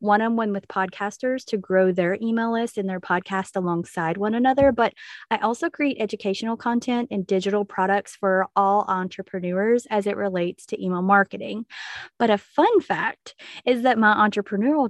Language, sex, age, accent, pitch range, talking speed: English, female, 20-39, American, 185-225 Hz, 160 wpm